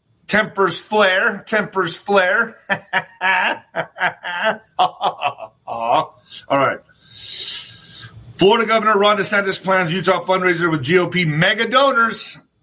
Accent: American